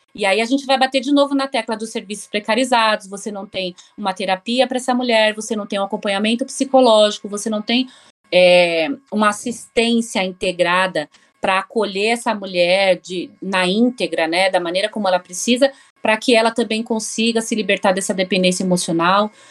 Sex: female